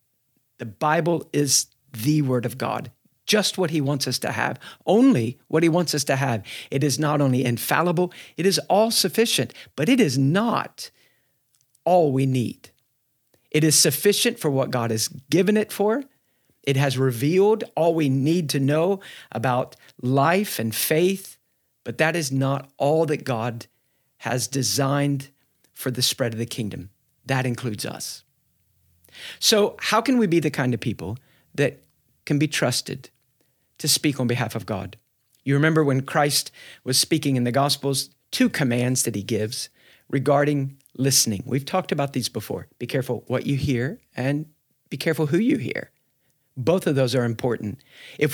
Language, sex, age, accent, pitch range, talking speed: English, male, 50-69, American, 125-155 Hz, 165 wpm